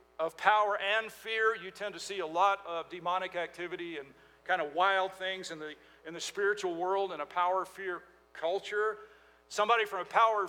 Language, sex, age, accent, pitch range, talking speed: English, male, 50-69, American, 155-195 Hz, 190 wpm